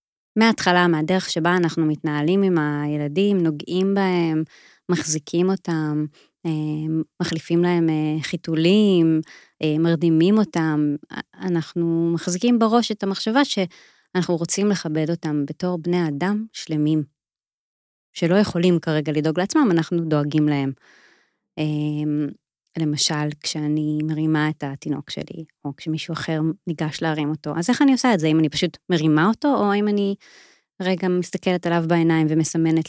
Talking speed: 125 wpm